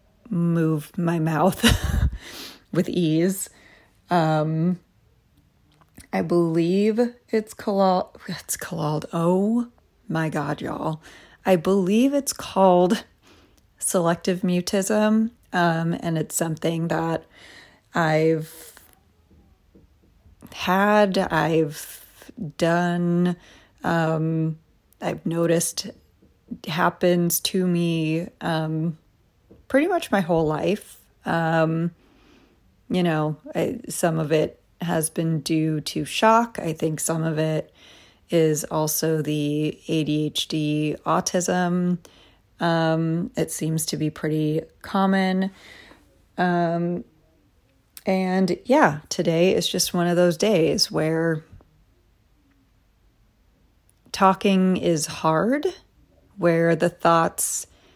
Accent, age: American, 30-49